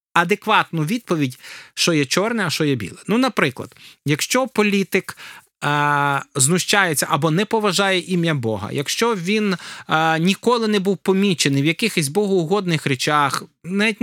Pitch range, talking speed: 160-220 Hz, 135 wpm